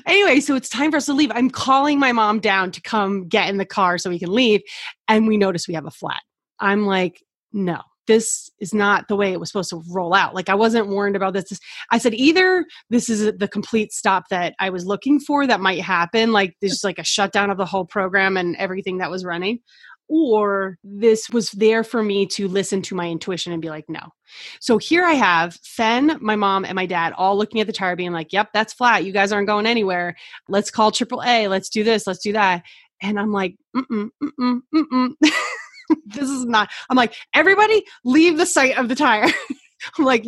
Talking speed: 225 wpm